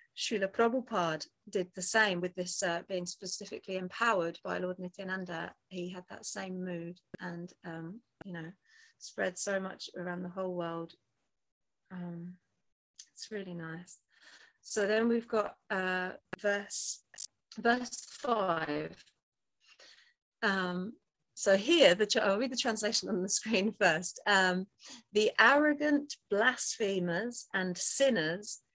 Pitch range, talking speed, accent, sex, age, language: 180-235 Hz, 125 wpm, British, female, 30-49, English